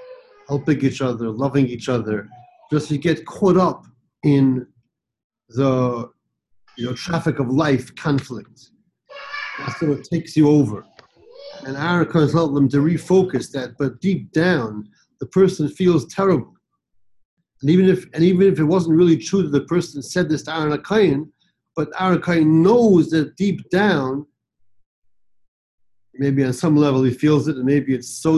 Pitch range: 125-165 Hz